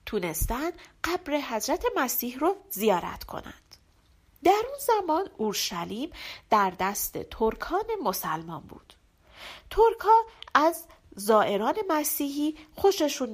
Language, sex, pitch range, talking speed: Persian, female, 215-335 Hz, 95 wpm